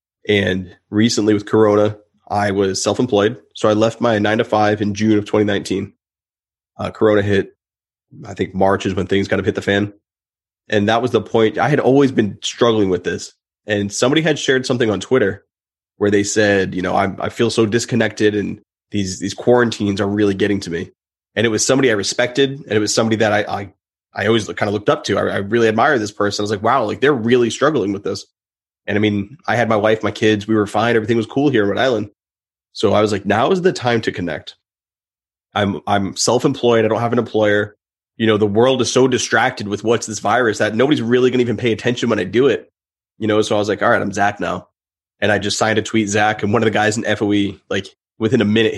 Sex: male